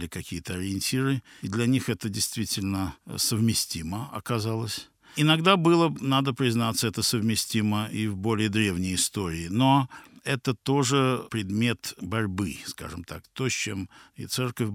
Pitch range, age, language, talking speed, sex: 95-125 Hz, 60-79, Russian, 130 wpm, male